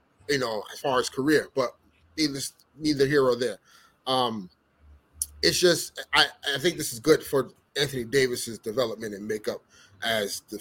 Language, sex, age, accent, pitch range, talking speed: English, male, 30-49, American, 125-175 Hz, 165 wpm